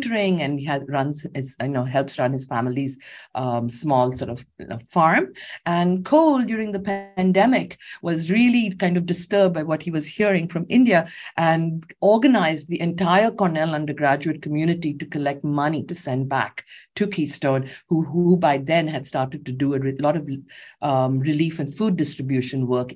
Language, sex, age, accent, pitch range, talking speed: English, female, 50-69, Indian, 135-175 Hz, 165 wpm